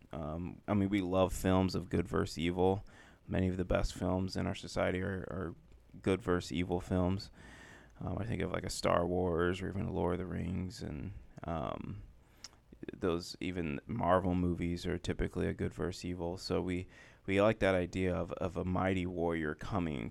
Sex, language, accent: male, English, American